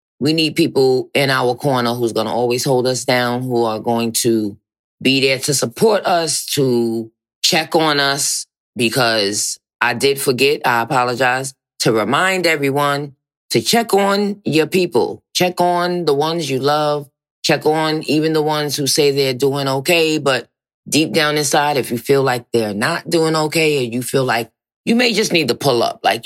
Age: 20-39